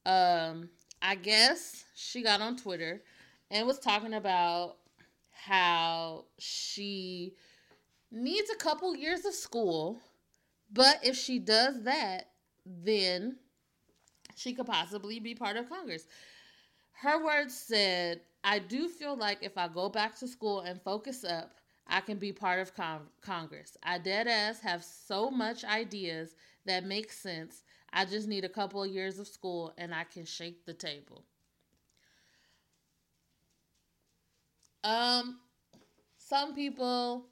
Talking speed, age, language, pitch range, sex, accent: 130 wpm, 30-49, English, 180-255 Hz, female, American